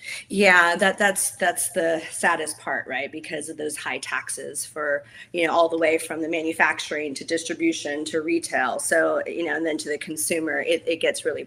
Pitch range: 155-195 Hz